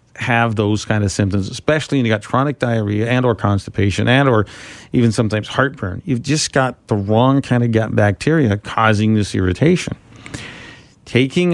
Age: 50-69